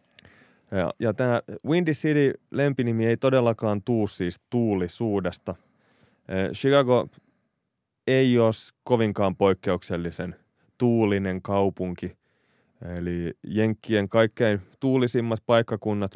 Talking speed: 80 wpm